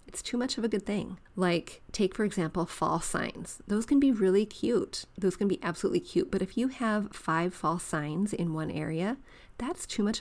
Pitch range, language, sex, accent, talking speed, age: 170-215 Hz, English, female, American, 210 wpm, 30-49